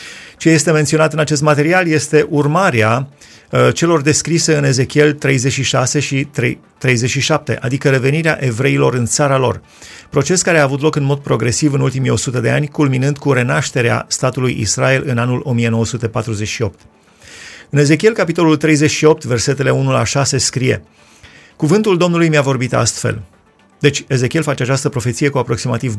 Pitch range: 120-150 Hz